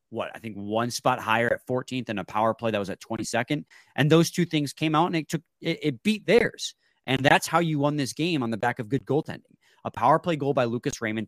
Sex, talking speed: male, 260 wpm